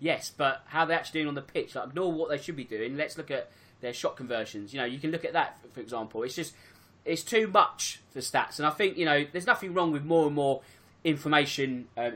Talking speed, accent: 255 wpm, British